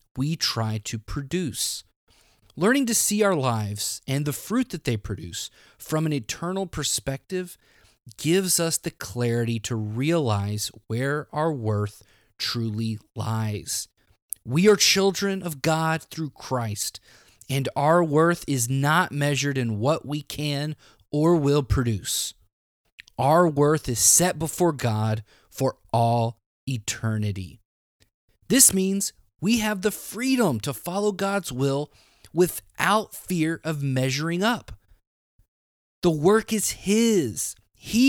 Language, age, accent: English, 30-49, American